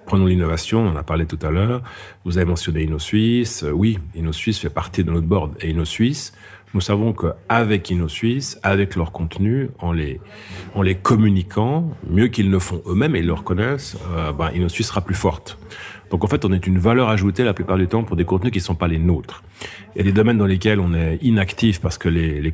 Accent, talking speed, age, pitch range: French, 225 wpm, 40-59, 85-105 Hz